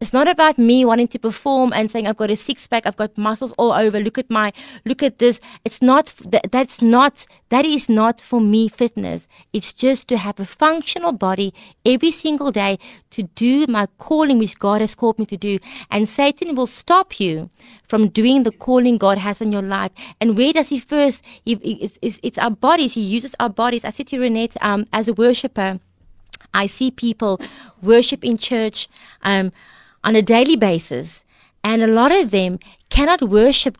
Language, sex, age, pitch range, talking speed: English, female, 20-39, 210-260 Hz, 190 wpm